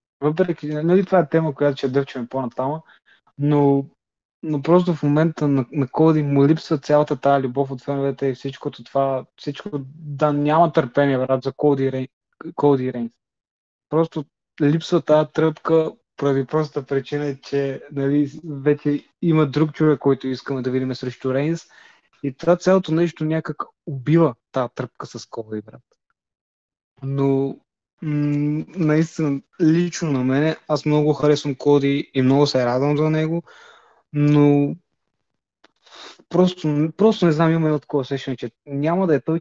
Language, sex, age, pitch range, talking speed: Bulgarian, male, 20-39, 140-160 Hz, 145 wpm